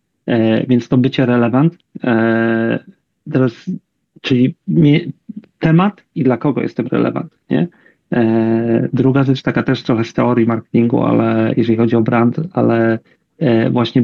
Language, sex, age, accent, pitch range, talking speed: Polish, male, 40-59, native, 115-135 Hz, 110 wpm